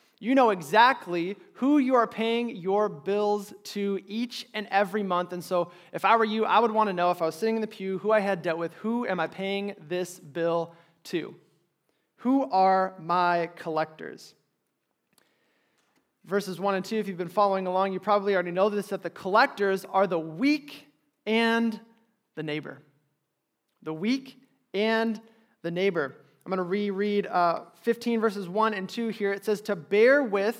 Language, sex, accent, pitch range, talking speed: English, male, American, 185-230 Hz, 180 wpm